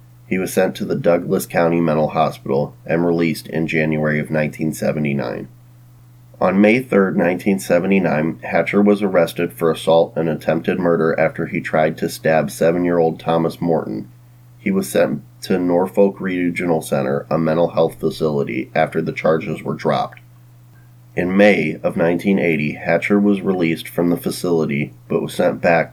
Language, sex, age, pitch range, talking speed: English, male, 30-49, 75-95 Hz, 150 wpm